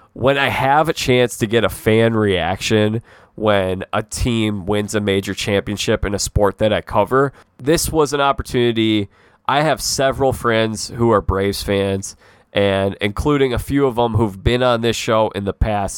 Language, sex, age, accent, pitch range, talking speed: English, male, 20-39, American, 100-120 Hz, 185 wpm